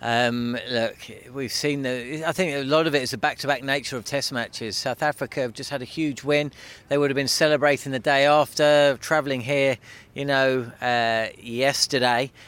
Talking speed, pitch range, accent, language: 200 wpm, 130-170 Hz, British, English